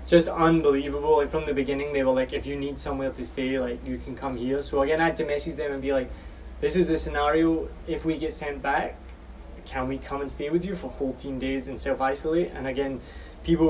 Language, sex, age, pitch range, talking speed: English, male, 20-39, 125-150 Hz, 235 wpm